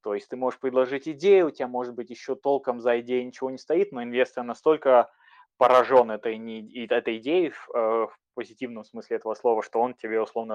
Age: 20-39